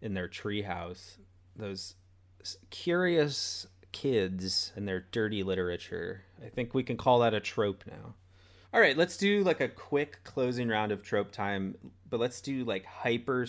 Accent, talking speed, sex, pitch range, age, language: American, 160 wpm, male, 95-125 Hz, 30-49, English